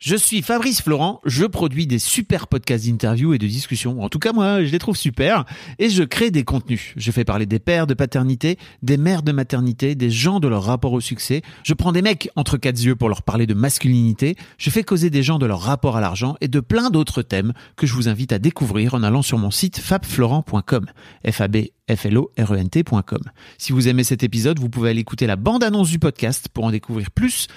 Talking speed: 220 wpm